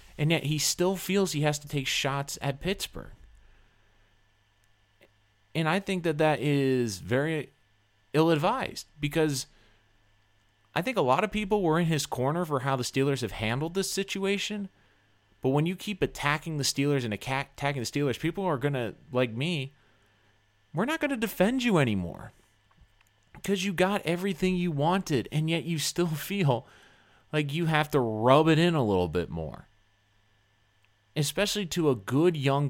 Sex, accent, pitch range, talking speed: male, American, 105-155 Hz, 165 wpm